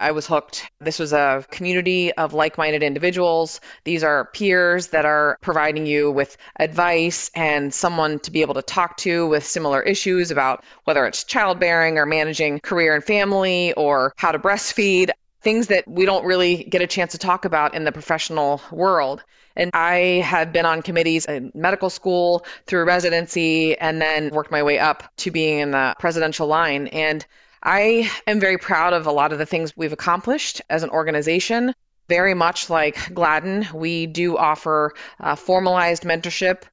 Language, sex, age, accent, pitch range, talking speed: English, female, 20-39, American, 150-180 Hz, 175 wpm